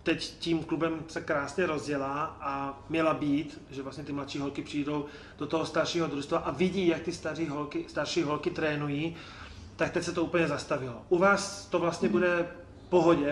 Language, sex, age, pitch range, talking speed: Czech, male, 30-49, 145-165 Hz, 180 wpm